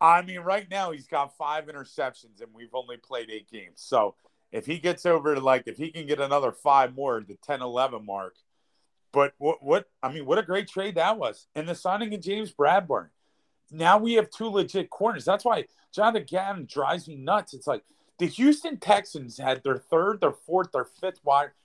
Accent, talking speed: American, 205 wpm